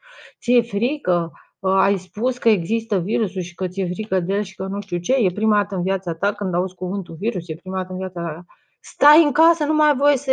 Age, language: 30-49, Romanian